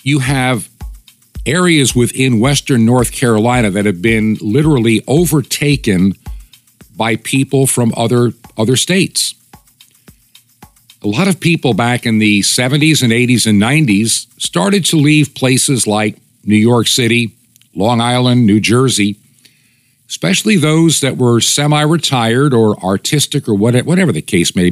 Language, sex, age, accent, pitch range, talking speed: English, male, 50-69, American, 110-140 Hz, 130 wpm